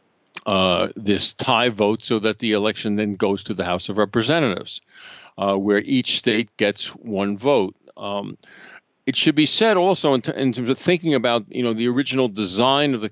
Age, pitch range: 50-69, 105-140 Hz